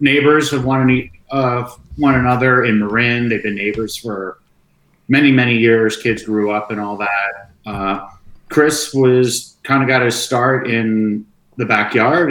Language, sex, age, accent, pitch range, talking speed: English, male, 50-69, American, 100-120 Hz, 150 wpm